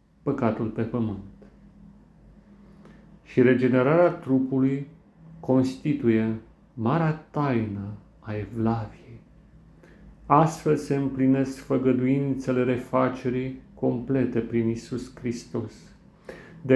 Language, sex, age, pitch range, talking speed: Romanian, male, 40-59, 115-150 Hz, 75 wpm